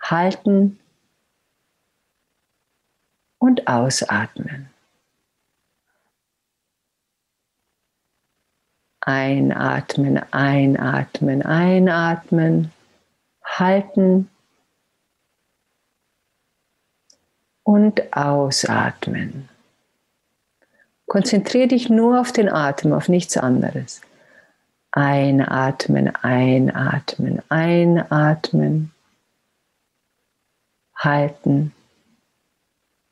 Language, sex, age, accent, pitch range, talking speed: German, female, 50-69, German, 135-190 Hz, 40 wpm